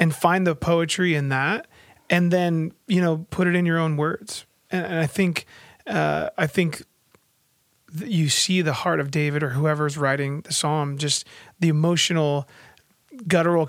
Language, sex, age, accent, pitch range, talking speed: English, male, 30-49, American, 150-175 Hz, 170 wpm